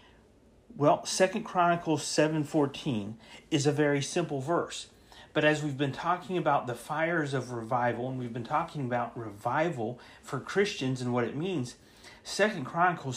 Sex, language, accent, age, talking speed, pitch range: male, English, American, 40-59, 150 wpm, 130-175 Hz